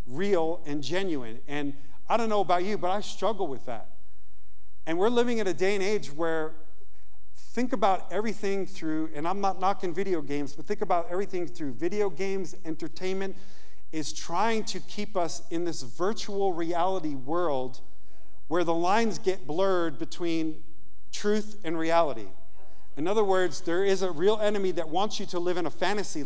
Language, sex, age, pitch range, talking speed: English, male, 50-69, 145-180 Hz, 175 wpm